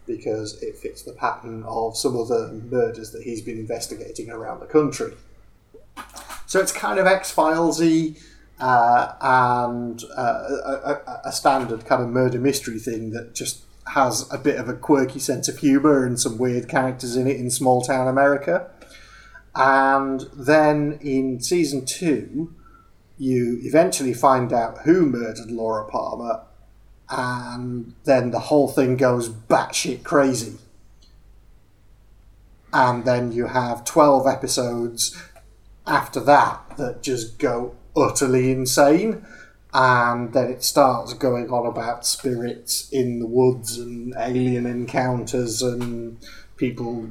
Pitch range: 120-135 Hz